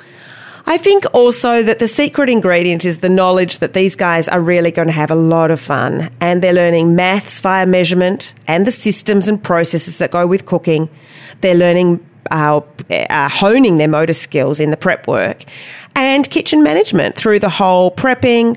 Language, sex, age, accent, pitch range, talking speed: English, female, 30-49, Australian, 170-230 Hz, 180 wpm